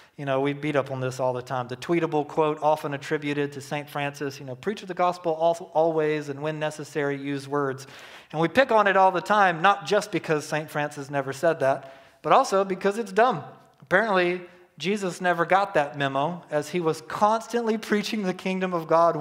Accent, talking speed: American, 205 wpm